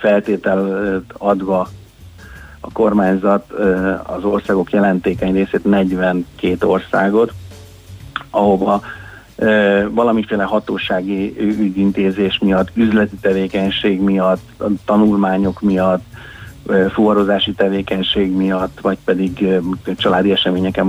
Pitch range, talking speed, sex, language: 95-105 Hz, 80 wpm, male, Hungarian